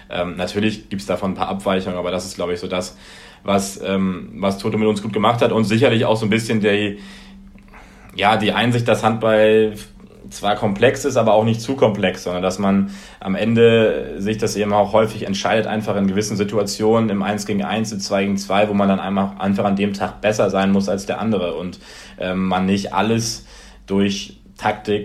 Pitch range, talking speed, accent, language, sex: 95-105 Hz, 210 wpm, German, German, male